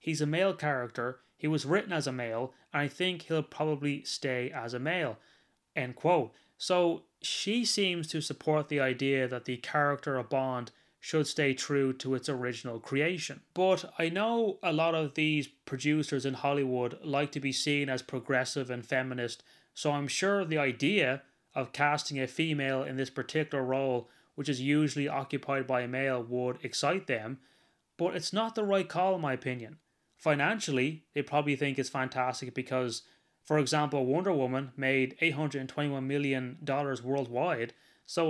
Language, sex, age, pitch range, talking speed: English, male, 20-39, 130-165 Hz, 165 wpm